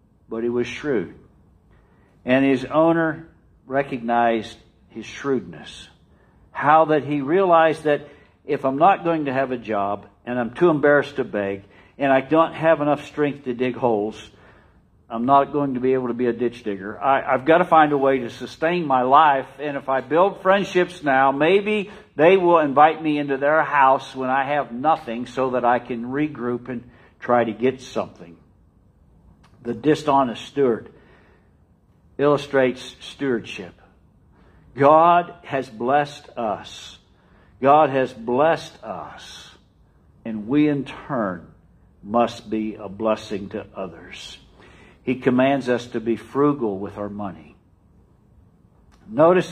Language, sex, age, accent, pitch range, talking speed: English, male, 60-79, American, 105-145 Hz, 145 wpm